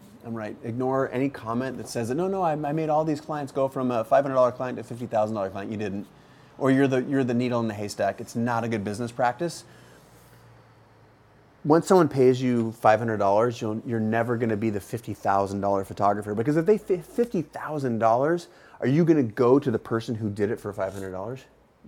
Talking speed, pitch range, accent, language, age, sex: 205 wpm, 105-130 Hz, American, English, 30-49, male